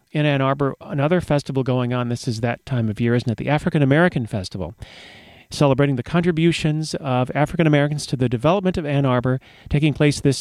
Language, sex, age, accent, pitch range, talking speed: English, male, 40-59, American, 130-160 Hz, 185 wpm